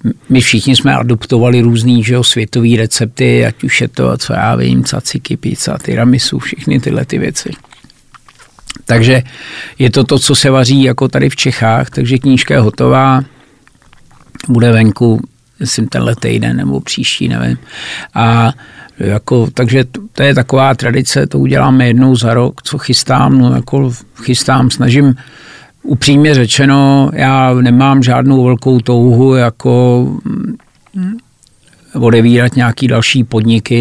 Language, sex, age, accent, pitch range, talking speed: Czech, male, 50-69, native, 115-130 Hz, 135 wpm